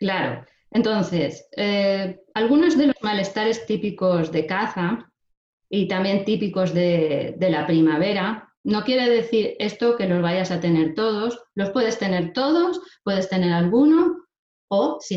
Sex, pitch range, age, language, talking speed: female, 175-225 Hz, 20-39, Spanish, 140 wpm